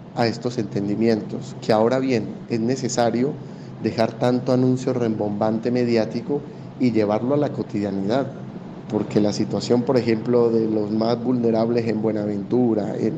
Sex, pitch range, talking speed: male, 110-130 Hz, 135 wpm